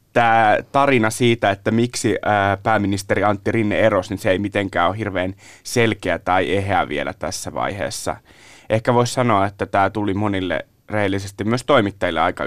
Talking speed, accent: 155 wpm, native